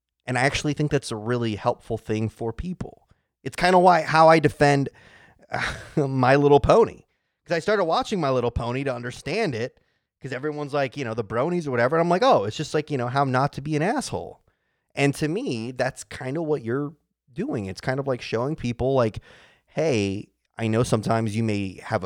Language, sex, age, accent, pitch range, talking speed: English, male, 30-49, American, 100-140 Hz, 215 wpm